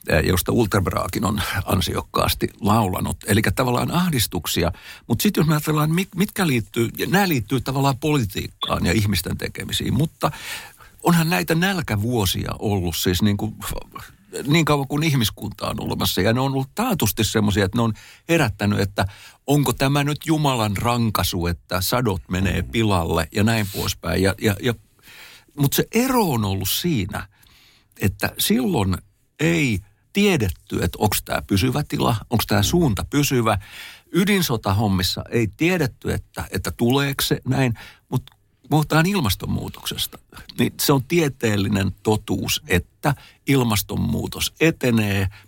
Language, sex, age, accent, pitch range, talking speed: Finnish, male, 60-79, native, 100-140 Hz, 135 wpm